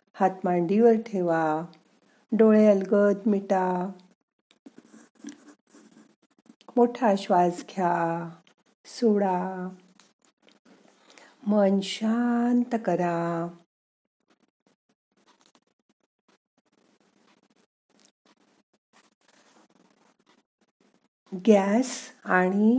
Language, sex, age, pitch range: Marathi, female, 50-69, 185-255 Hz